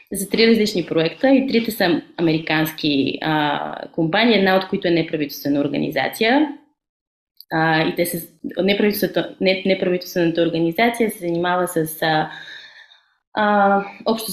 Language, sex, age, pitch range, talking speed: Bulgarian, female, 20-39, 160-195 Hz, 115 wpm